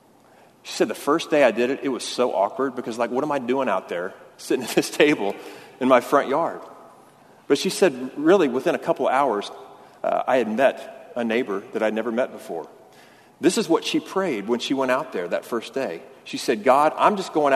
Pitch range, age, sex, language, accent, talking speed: 120-165 Hz, 40-59, male, English, American, 225 wpm